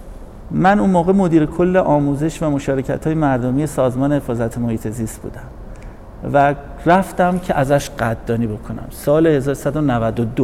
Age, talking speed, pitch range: 50-69, 130 wpm, 130-180 Hz